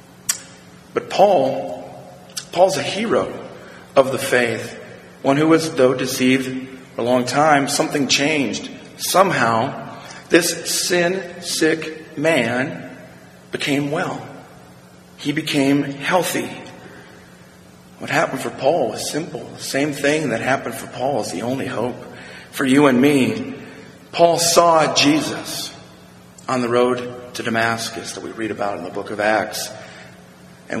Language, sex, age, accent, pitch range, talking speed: English, male, 40-59, American, 95-145 Hz, 130 wpm